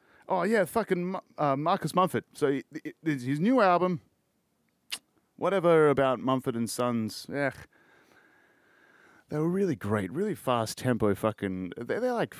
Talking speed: 125 wpm